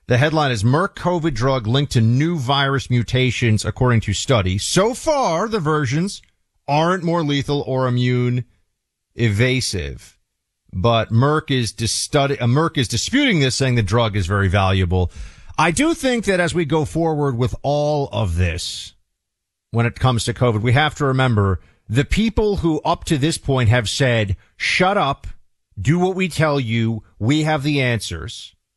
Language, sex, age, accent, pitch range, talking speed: English, male, 40-59, American, 110-160 Hz, 165 wpm